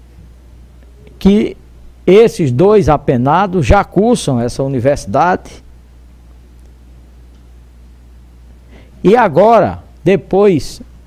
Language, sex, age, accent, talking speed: Portuguese, male, 60-79, Brazilian, 60 wpm